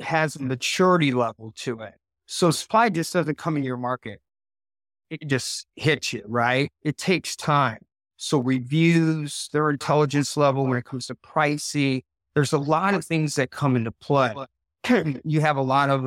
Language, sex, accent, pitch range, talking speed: English, male, American, 125-150 Hz, 170 wpm